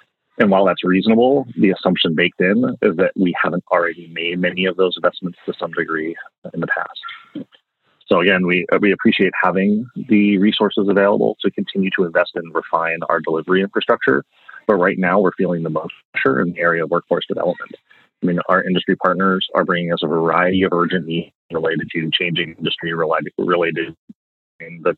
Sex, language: male, English